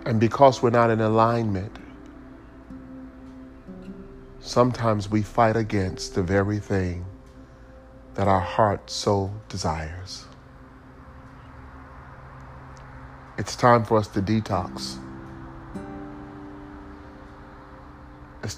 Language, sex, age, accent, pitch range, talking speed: English, male, 40-59, American, 85-115 Hz, 80 wpm